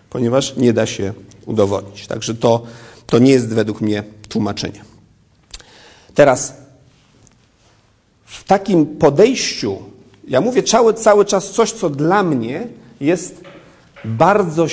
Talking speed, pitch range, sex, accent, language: 115 wpm, 110-145 Hz, male, native, Polish